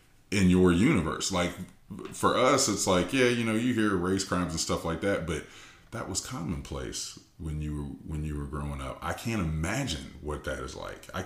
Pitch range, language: 80-95 Hz, English